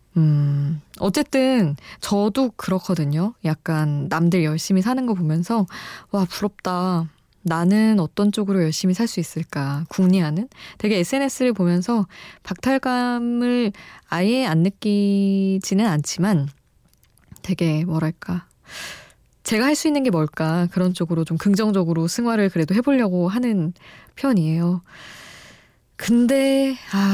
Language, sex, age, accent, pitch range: Korean, female, 20-39, native, 165-220 Hz